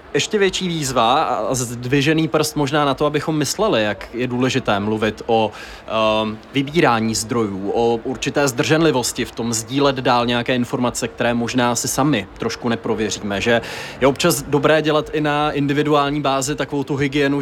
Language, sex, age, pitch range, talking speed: Czech, male, 20-39, 125-155 Hz, 160 wpm